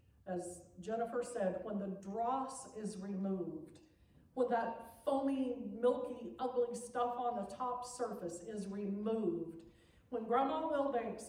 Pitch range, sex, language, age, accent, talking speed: 210-265 Hz, female, English, 50-69, American, 120 wpm